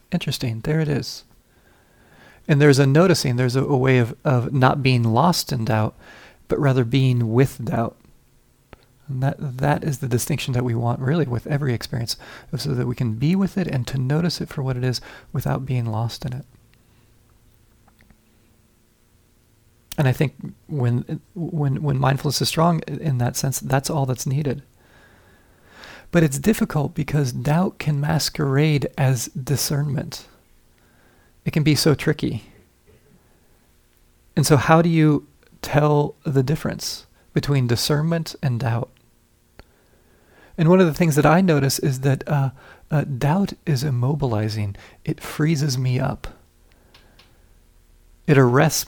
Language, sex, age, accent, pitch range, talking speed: English, male, 40-59, American, 120-150 Hz, 145 wpm